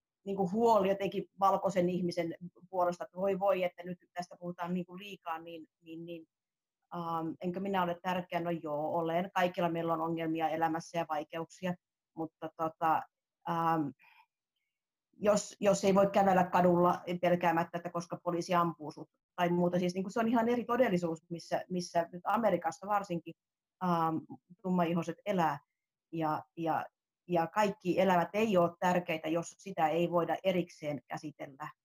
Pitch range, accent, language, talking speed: 165-190 Hz, native, Finnish, 150 wpm